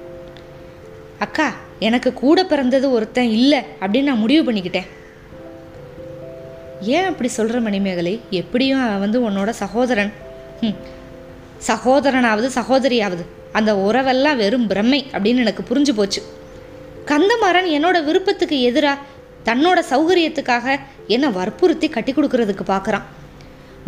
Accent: native